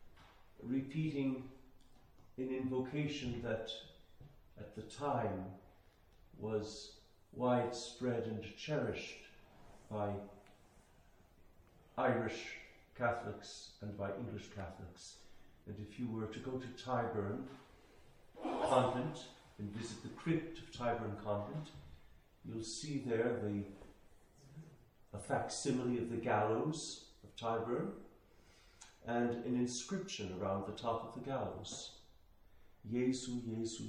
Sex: male